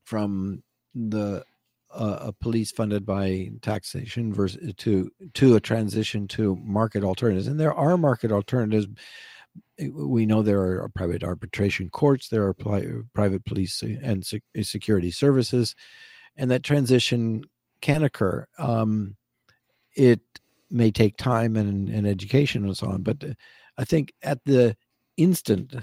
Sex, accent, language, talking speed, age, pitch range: male, American, English, 130 wpm, 50-69, 105-130 Hz